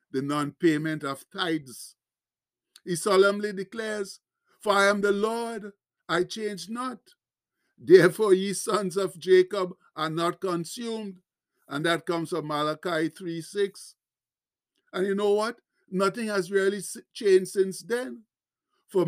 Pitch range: 170-205 Hz